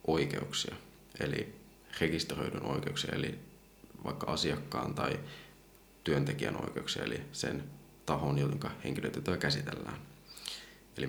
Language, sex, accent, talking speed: Finnish, male, native, 90 wpm